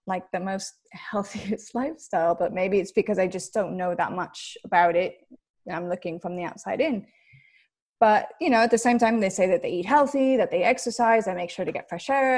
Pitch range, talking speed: 180-230 Hz, 225 wpm